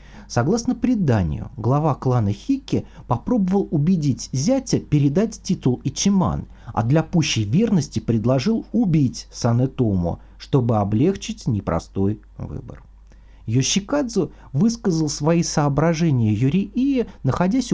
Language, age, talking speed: Russian, 40-59, 95 wpm